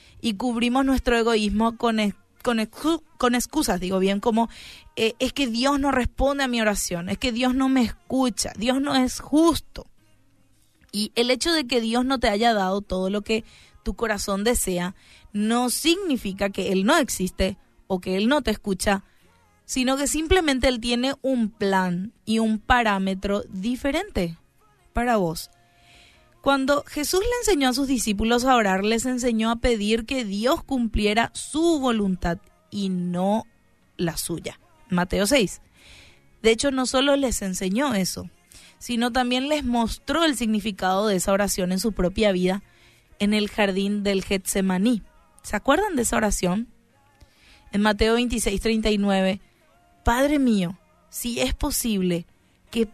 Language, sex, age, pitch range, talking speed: Spanish, female, 20-39, 195-255 Hz, 150 wpm